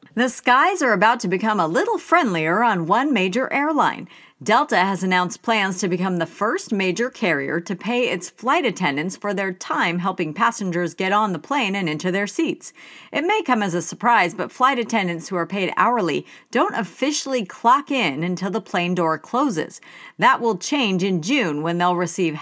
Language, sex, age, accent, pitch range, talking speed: English, female, 40-59, American, 175-245 Hz, 190 wpm